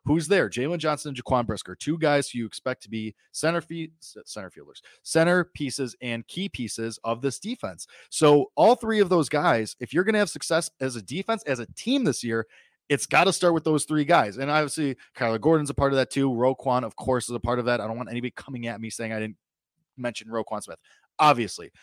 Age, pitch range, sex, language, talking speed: 20-39, 130-185 Hz, male, English, 235 wpm